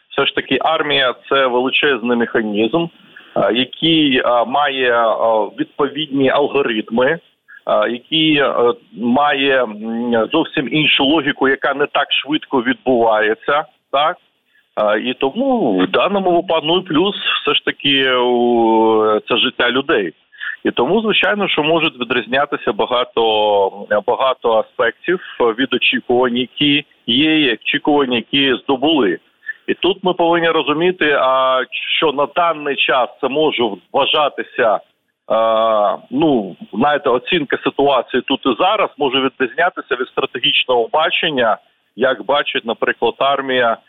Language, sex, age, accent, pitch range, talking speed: Ukrainian, male, 40-59, native, 120-170 Hz, 110 wpm